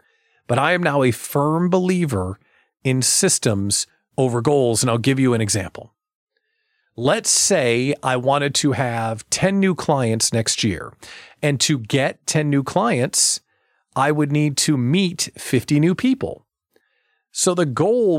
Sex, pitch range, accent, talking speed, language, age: male, 115-165 Hz, American, 150 wpm, English, 40-59